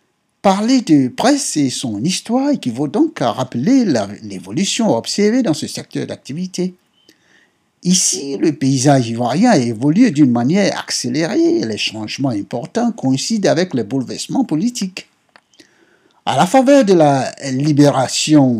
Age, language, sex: 60-79, French, male